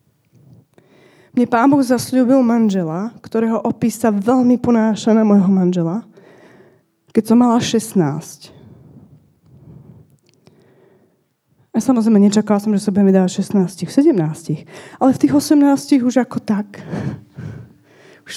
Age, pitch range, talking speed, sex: 20-39, 185-230 Hz, 110 wpm, female